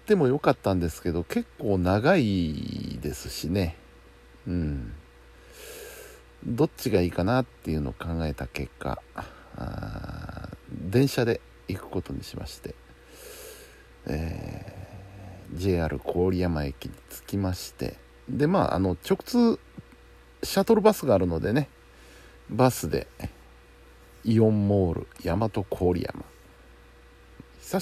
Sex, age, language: male, 60-79, Japanese